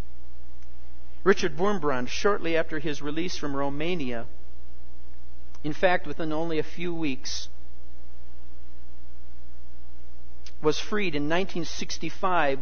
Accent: American